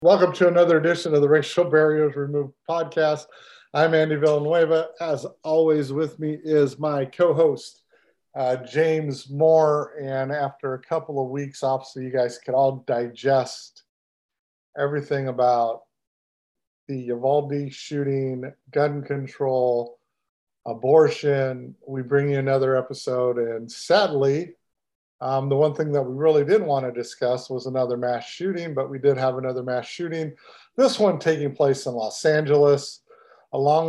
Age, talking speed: 50-69, 140 wpm